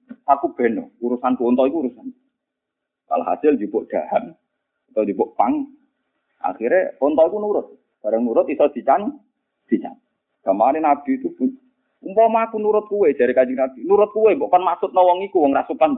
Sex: male